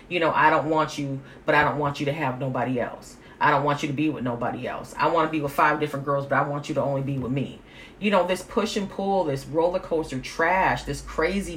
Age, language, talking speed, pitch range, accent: 40-59, English, 275 wpm, 140-195 Hz, American